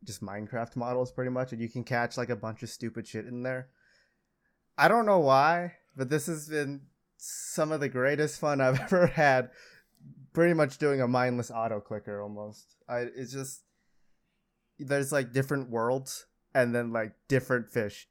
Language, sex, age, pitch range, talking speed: English, male, 20-39, 120-150 Hz, 175 wpm